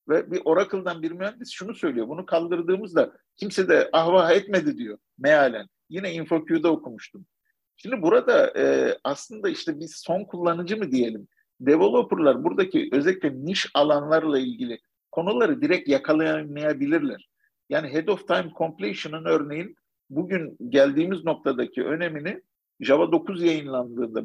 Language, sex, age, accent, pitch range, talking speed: Turkish, male, 50-69, native, 140-220 Hz, 125 wpm